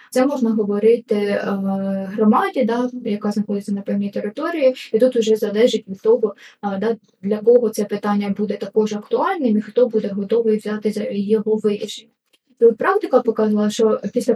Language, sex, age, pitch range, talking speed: Ukrainian, female, 20-39, 210-245 Hz, 160 wpm